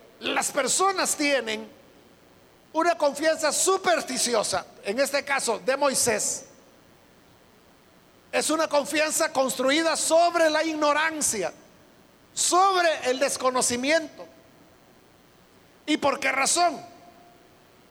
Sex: male